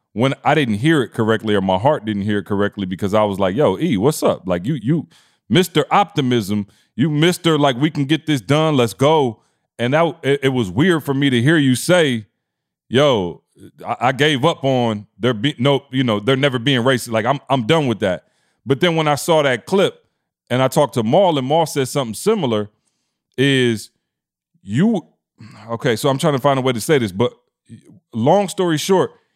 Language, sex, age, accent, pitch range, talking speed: English, male, 30-49, American, 125-195 Hz, 210 wpm